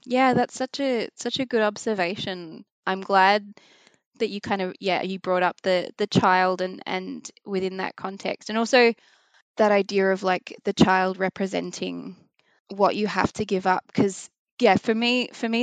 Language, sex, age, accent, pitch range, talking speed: English, female, 20-39, Australian, 185-215 Hz, 180 wpm